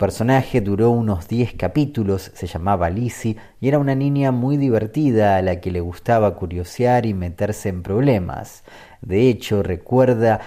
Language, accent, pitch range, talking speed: Spanish, Argentinian, 95-120 Hz, 155 wpm